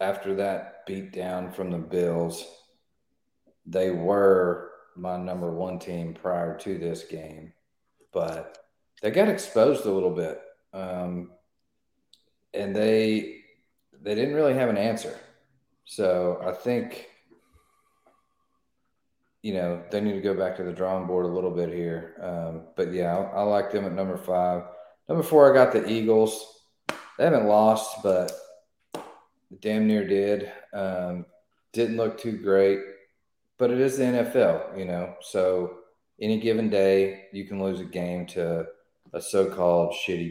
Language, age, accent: English, 40-59, American